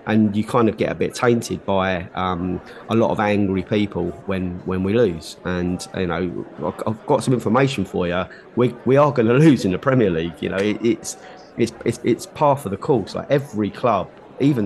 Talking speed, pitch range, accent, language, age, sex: 215 wpm, 95-115 Hz, British, English, 30-49, male